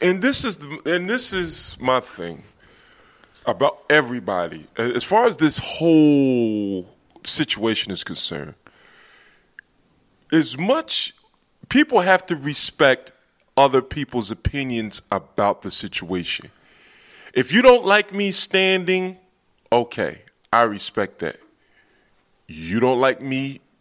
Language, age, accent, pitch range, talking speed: English, 20-39, American, 120-190 Hz, 115 wpm